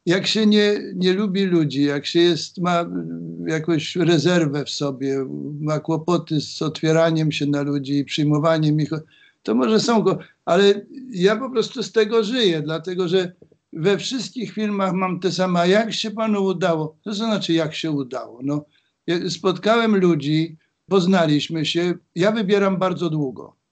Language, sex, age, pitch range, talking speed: Polish, male, 60-79, 155-190 Hz, 155 wpm